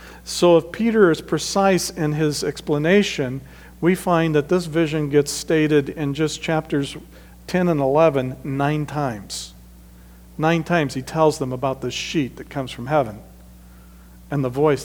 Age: 50-69